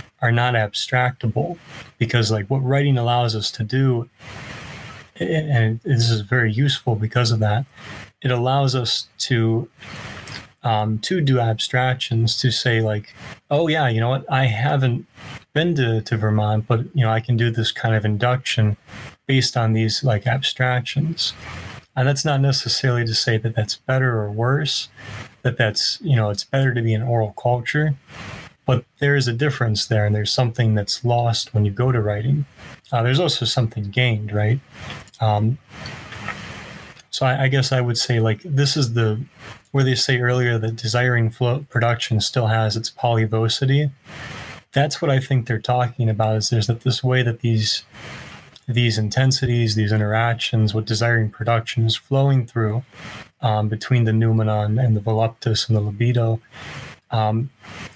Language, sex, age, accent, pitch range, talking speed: English, male, 30-49, American, 110-130 Hz, 165 wpm